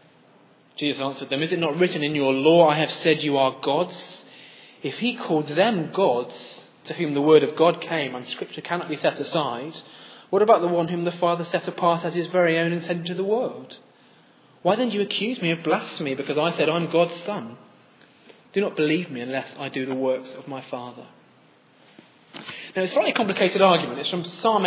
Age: 30-49